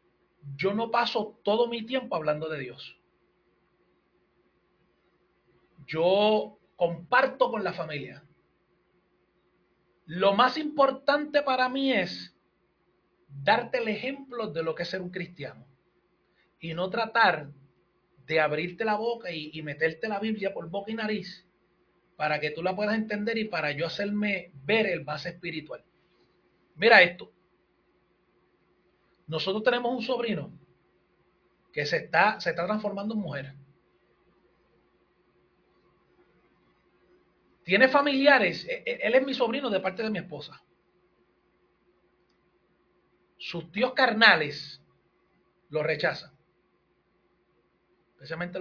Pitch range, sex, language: 165-240 Hz, male, Spanish